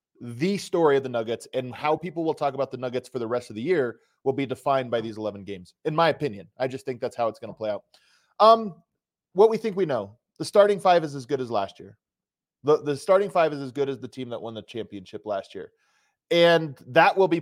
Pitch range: 130-180 Hz